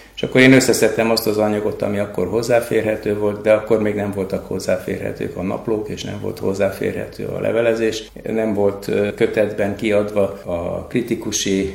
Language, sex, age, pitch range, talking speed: Hungarian, male, 60-79, 100-110 Hz, 160 wpm